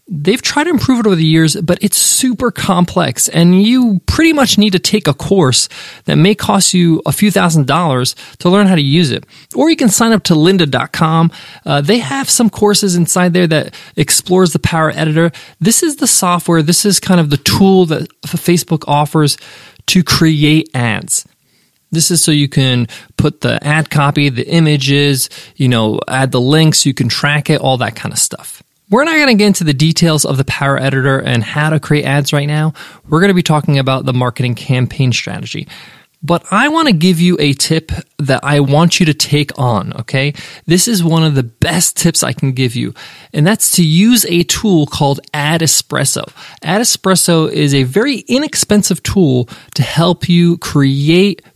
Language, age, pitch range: English, 20-39, 140-185 Hz